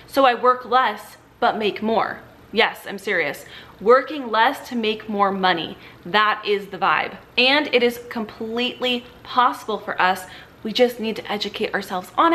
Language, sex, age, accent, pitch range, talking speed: English, female, 30-49, American, 220-270 Hz, 165 wpm